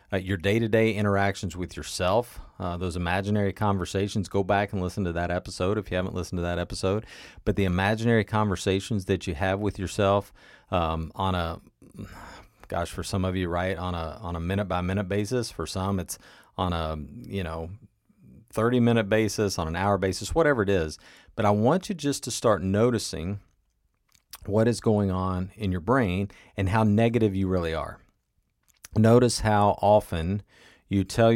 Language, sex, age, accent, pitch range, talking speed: English, male, 40-59, American, 90-110 Hz, 170 wpm